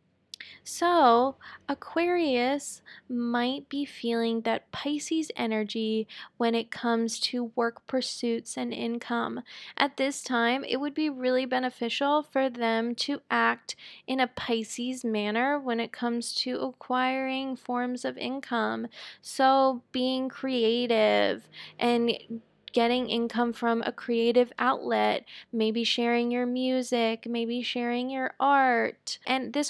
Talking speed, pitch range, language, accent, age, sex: 120 wpm, 235-280 Hz, English, American, 20-39, female